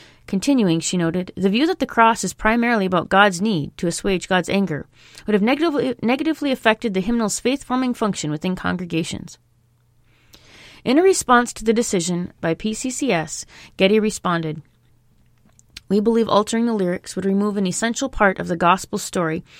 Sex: female